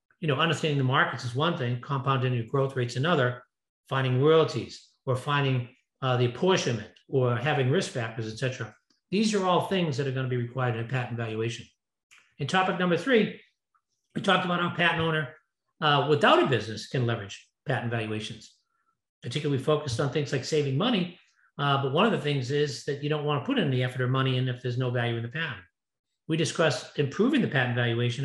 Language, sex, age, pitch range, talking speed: English, male, 50-69, 125-155 Hz, 205 wpm